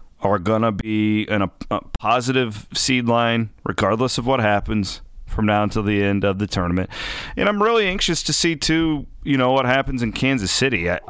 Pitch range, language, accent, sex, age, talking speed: 100-125 Hz, English, American, male, 30-49, 200 wpm